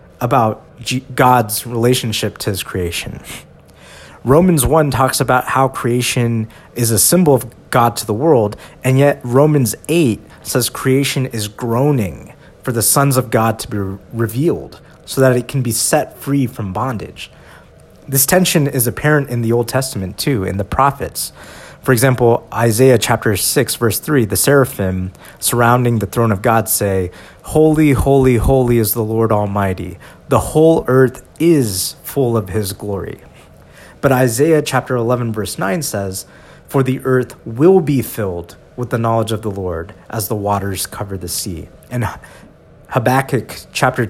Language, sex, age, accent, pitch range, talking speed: English, male, 30-49, American, 110-140 Hz, 155 wpm